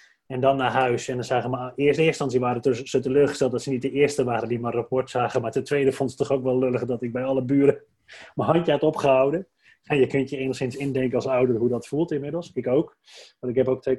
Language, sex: Dutch, male